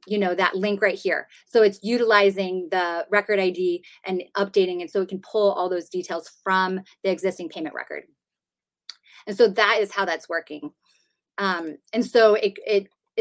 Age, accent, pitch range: 30-49, American, 185-225 Hz